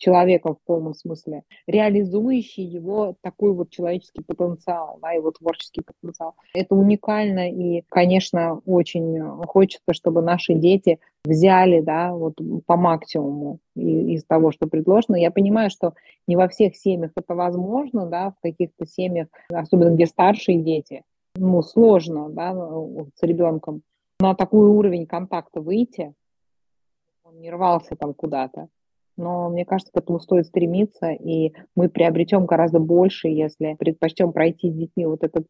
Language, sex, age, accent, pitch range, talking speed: Russian, female, 20-39, native, 165-185 Hz, 140 wpm